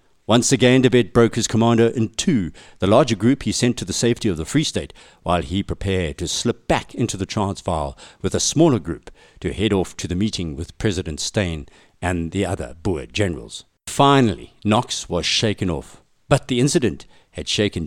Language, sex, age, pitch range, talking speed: English, male, 60-79, 90-120 Hz, 190 wpm